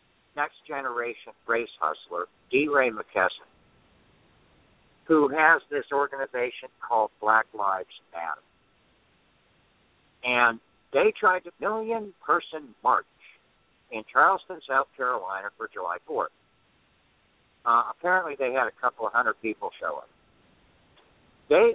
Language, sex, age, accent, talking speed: English, male, 60-79, American, 110 wpm